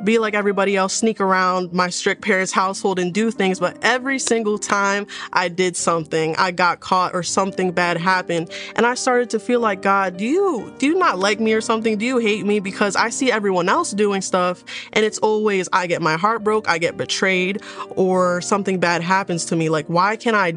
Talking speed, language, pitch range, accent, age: 220 wpm, English, 175-205 Hz, American, 20-39